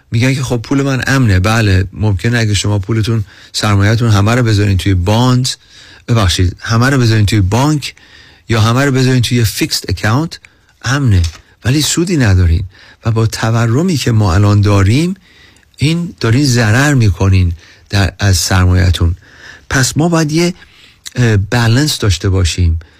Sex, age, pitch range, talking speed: male, 40-59, 95-130 Hz, 145 wpm